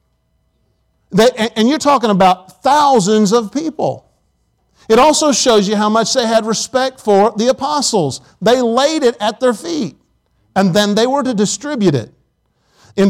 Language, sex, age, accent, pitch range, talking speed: English, male, 50-69, American, 170-230 Hz, 150 wpm